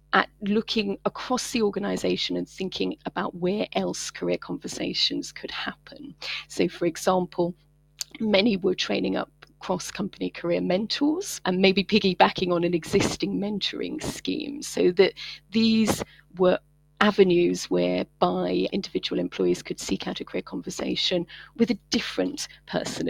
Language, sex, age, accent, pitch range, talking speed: English, female, 30-49, British, 160-210 Hz, 130 wpm